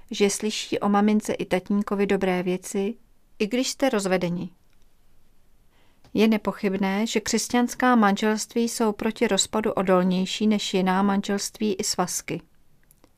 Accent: native